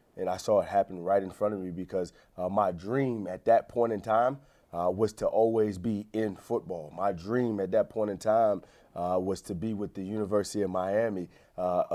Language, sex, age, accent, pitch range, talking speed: English, male, 30-49, American, 95-115 Hz, 215 wpm